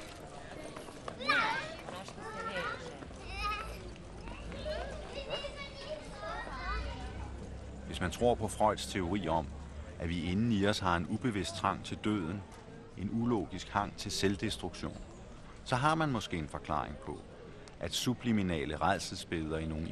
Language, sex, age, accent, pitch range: Danish, male, 60-79, native, 80-105 Hz